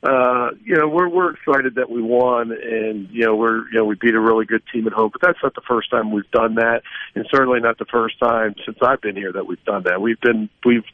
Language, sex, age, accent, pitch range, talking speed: English, male, 50-69, American, 115-125 Hz, 270 wpm